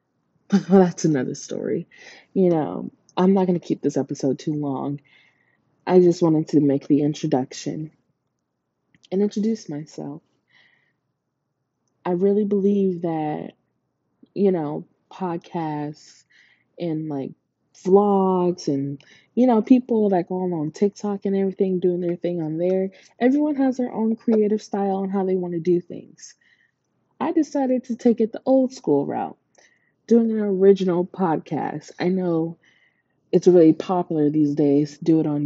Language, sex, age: English, female, 20-39